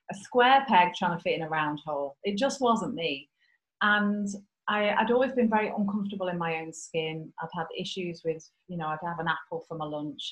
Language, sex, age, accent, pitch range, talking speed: English, female, 30-49, British, 155-190 Hz, 220 wpm